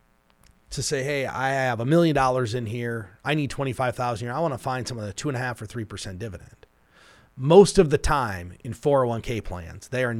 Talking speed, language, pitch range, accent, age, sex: 210 wpm, English, 105-135 Hz, American, 30-49, male